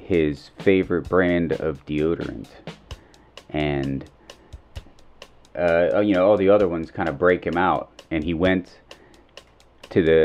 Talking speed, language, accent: 135 wpm, English, American